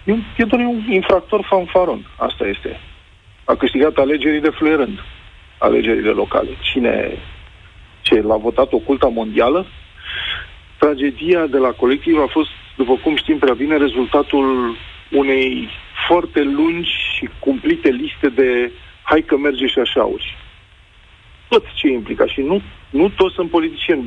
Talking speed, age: 135 wpm, 40-59